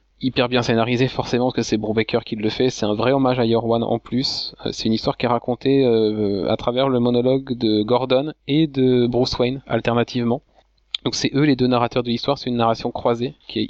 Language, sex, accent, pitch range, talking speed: French, male, French, 110-125 Hz, 225 wpm